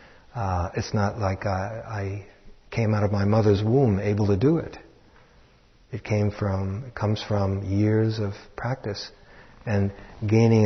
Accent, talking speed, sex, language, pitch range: American, 150 wpm, male, English, 100-115 Hz